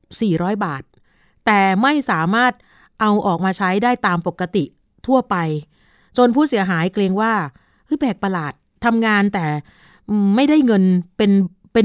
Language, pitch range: Thai, 180-220 Hz